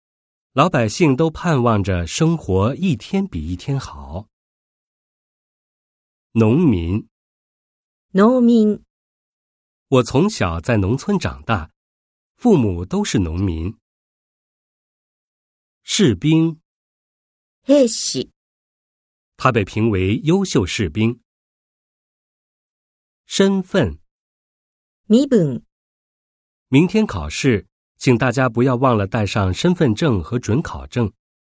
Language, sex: Japanese, male